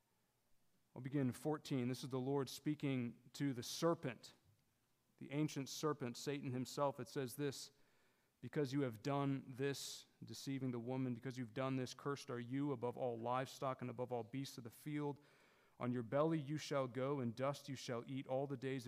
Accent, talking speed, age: American, 190 wpm, 40-59